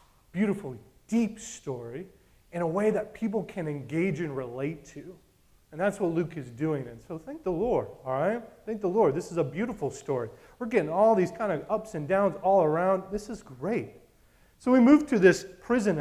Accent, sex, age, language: American, male, 30-49, English